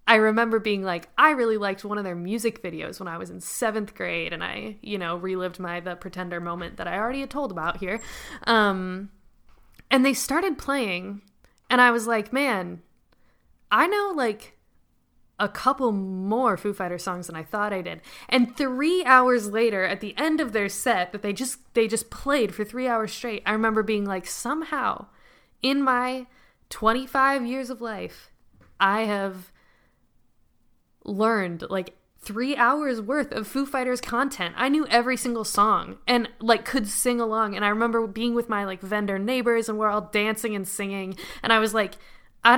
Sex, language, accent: female, English, American